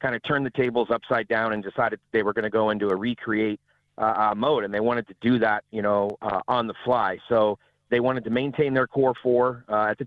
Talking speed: 255 wpm